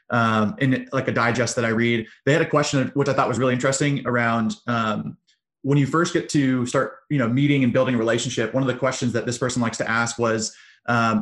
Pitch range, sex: 115-130 Hz, male